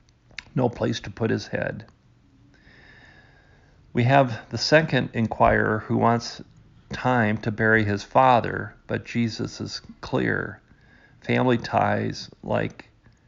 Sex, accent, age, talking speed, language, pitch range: male, American, 40-59, 115 wpm, English, 110-125 Hz